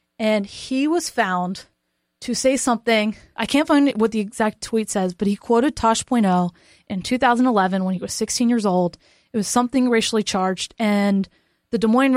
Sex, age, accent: female, 20-39, American